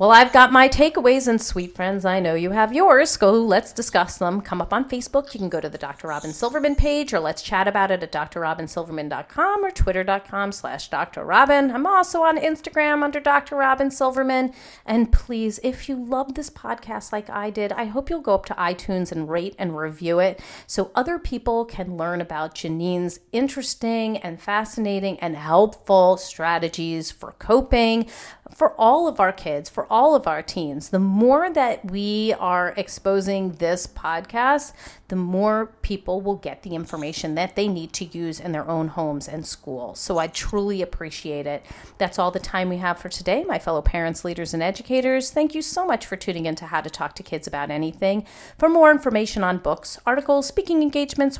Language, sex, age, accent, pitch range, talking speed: English, female, 40-59, American, 170-255 Hz, 190 wpm